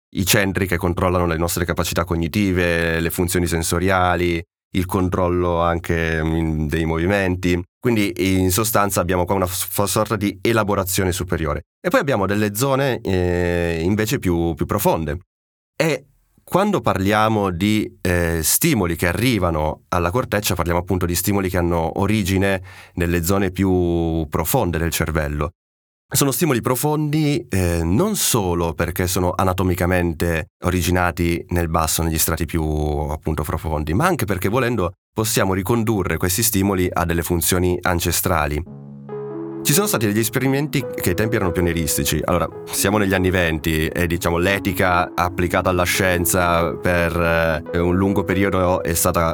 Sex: male